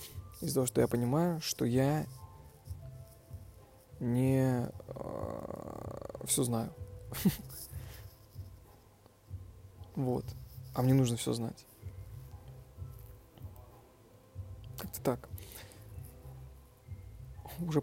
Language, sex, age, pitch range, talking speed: Russian, male, 20-39, 100-130 Hz, 65 wpm